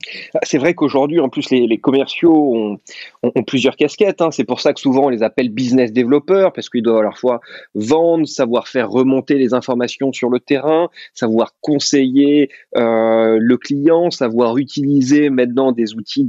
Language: French